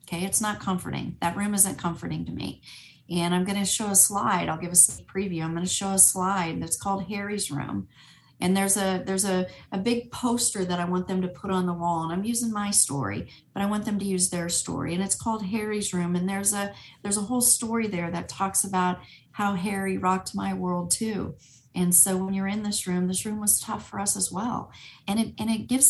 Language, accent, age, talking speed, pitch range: English, American, 40-59, 240 wpm, 175-210 Hz